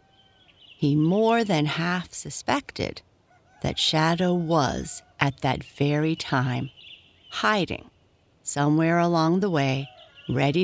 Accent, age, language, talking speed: American, 60-79, English, 100 wpm